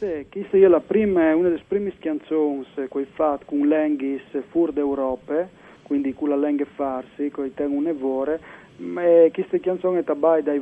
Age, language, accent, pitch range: 40-59, Italian, native, 140-160 Hz